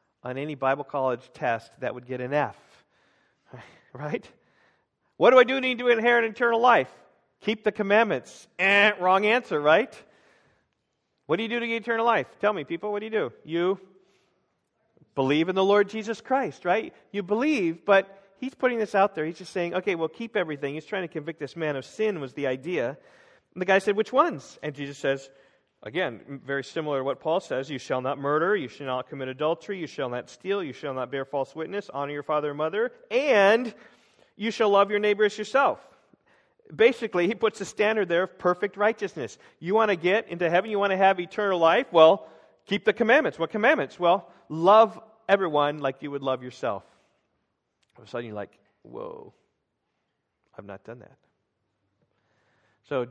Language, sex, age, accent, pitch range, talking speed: English, male, 40-59, American, 145-215 Hz, 195 wpm